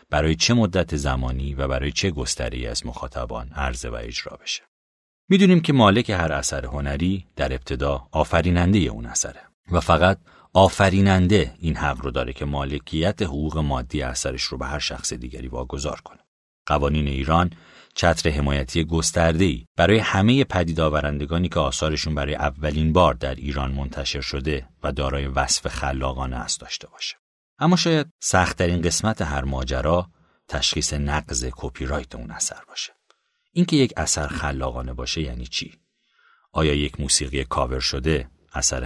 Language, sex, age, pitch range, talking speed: Persian, male, 40-59, 65-85 Hz, 145 wpm